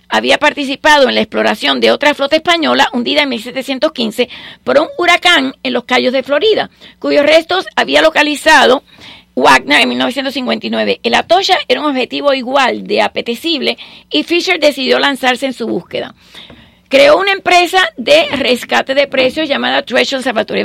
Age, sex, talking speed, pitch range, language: 40-59, female, 150 wpm, 245-305 Hz, English